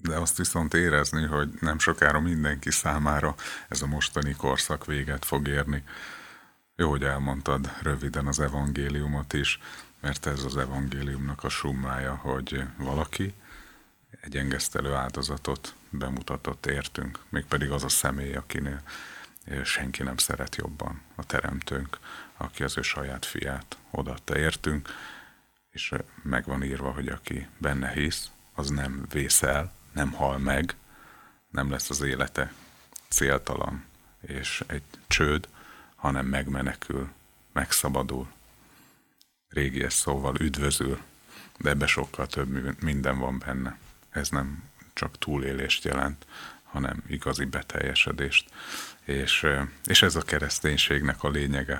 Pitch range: 70-75 Hz